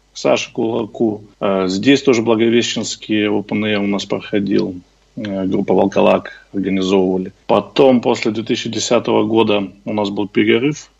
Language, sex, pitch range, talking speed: Russian, male, 105-130 Hz, 110 wpm